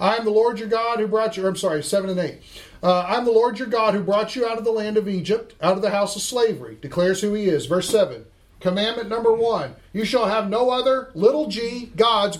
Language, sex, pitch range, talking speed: English, male, 185-235 Hz, 250 wpm